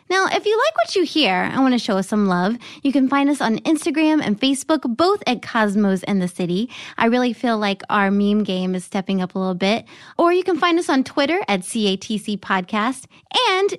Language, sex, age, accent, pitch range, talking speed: English, female, 20-39, American, 210-330 Hz, 225 wpm